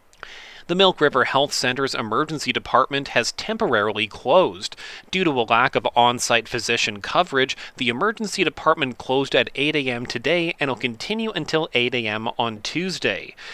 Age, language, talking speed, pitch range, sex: 30-49, English, 150 wpm, 120-165 Hz, male